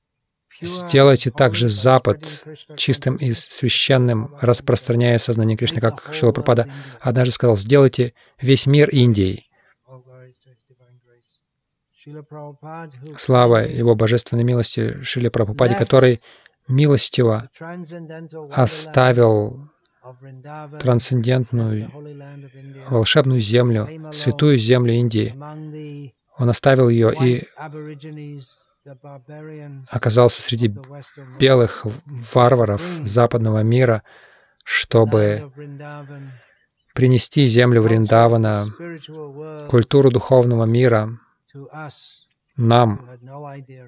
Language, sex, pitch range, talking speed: Russian, male, 115-140 Hz, 70 wpm